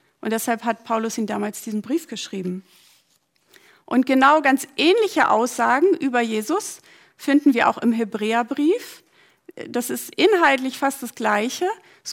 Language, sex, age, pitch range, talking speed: German, female, 50-69, 235-300 Hz, 140 wpm